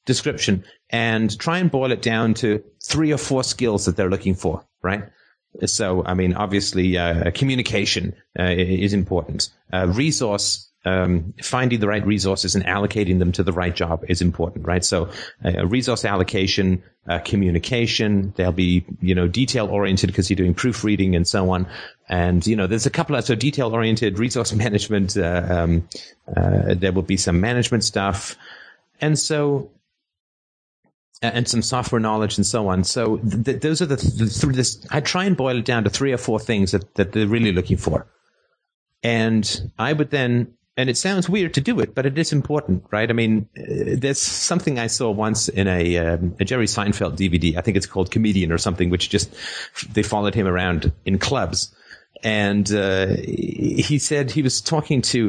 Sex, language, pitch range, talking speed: male, English, 95-120 Hz, 185 wpm